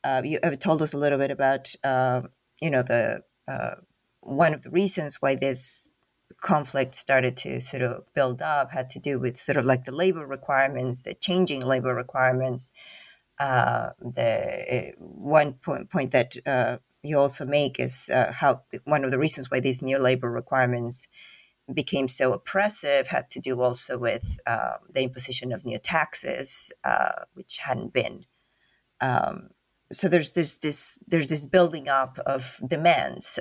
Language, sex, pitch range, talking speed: English, female, 130-155 Hz, 165 wpm